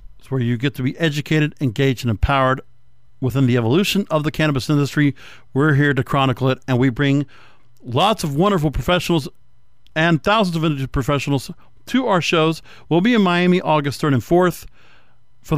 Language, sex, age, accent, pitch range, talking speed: English, male, 50-69, American, 135-170 Hz, 170 wpm